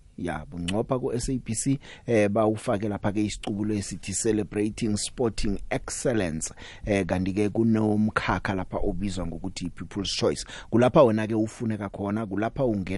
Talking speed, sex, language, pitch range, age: 135 wpm, male, English, 90-115 Hz, 30-49